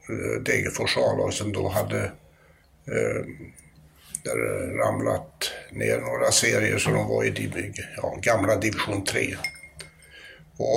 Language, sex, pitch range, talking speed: English, male, 80-115 Hz, 105 wpm